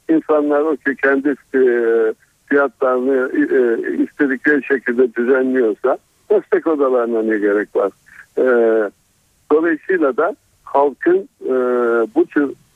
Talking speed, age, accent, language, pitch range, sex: 85 wpm, 60-79, native, Turkish, 125-155 Hz, male